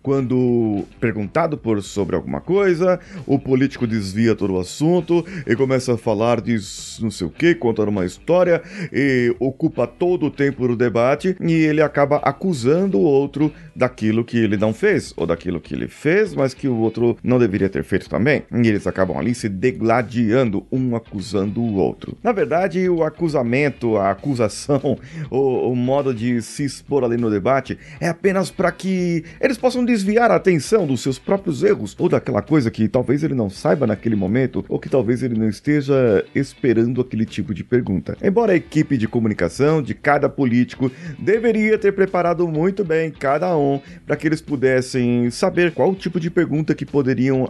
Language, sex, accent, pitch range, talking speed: Portuguese, male, Brazilian, 115-160 Hz, 180 wpm